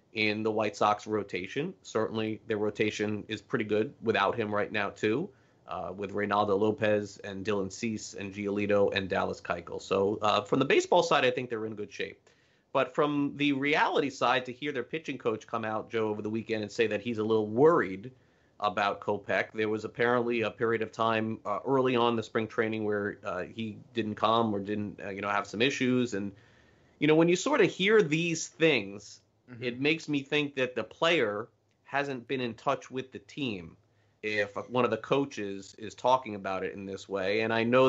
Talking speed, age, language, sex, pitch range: 205 wpm, 30-49, English, male, 105-125 Hz